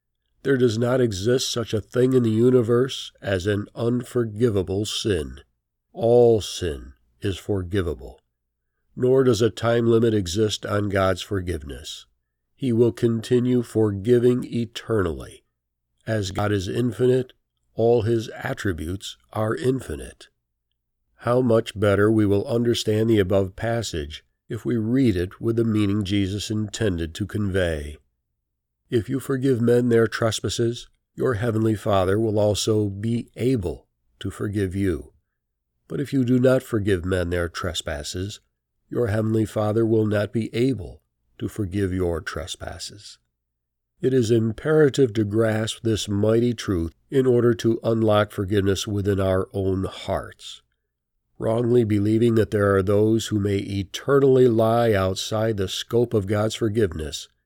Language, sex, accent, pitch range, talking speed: English, male, American, 95-120 Hz, 135 wpm